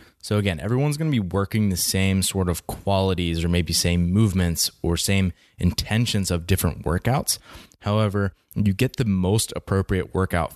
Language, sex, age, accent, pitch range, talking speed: English, male, 20-39, American, 85-100 Hz, 165 wpm